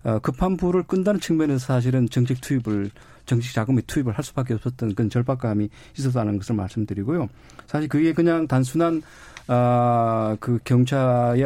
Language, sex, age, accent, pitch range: Korean, male, 40-59, native, 115-145 Hz